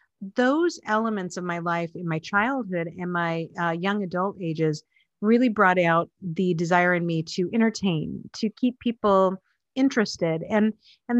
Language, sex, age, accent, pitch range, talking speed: English, female, 40-59, American, 175-215 Hz, 155 wpm